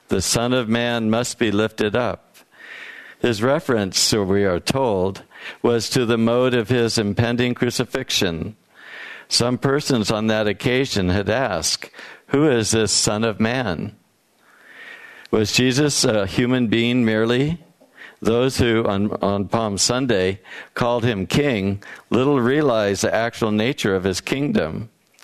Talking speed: 140 wpm